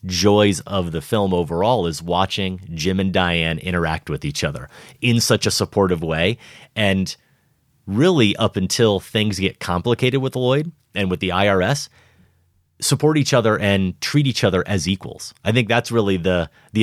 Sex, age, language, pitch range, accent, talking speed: male, 30-49, English, 90-120 Hz, American, 170 wpm